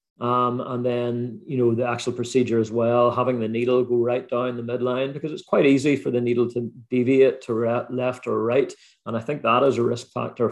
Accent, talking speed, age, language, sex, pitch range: British, 230 wpm, 40-59, English, male, 115-125 Hz